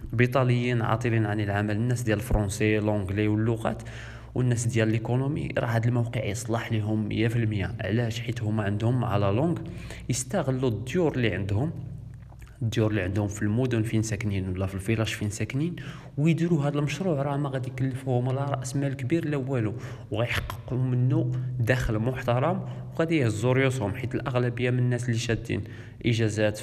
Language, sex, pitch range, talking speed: Arabic, male, 110-130 Hz, 150 wpm